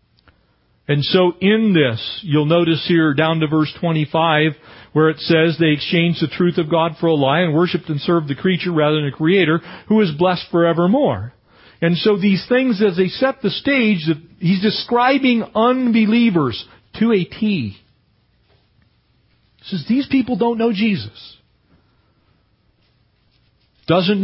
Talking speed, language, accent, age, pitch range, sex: 150 wpm, English, American, 40-59, 135-205 Hz, male